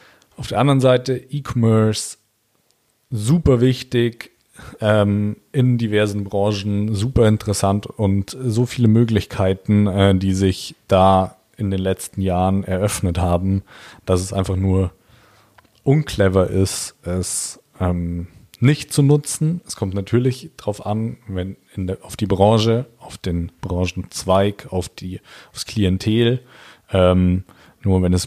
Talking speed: 125 wpm